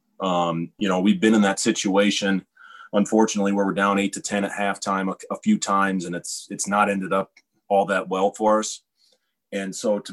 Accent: American